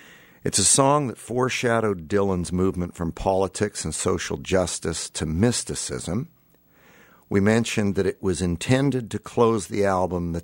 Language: English